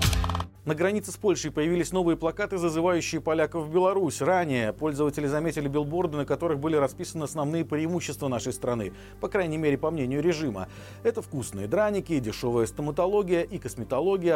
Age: 40-59